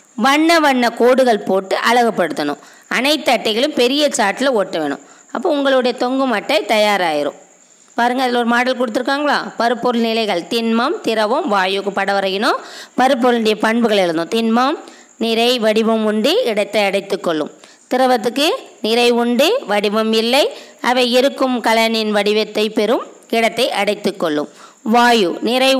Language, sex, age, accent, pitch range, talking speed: Tamil, female, 20-39, native, 215-265 Hz, 120 wpm